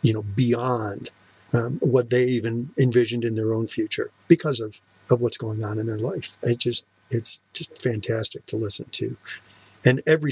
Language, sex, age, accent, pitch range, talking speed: English, male, 50-69, American, 110-135 Hz, 180 wpm